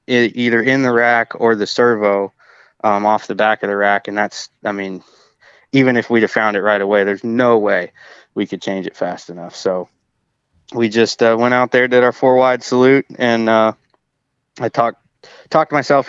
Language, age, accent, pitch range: English, 20-39, American, 105-125 Hz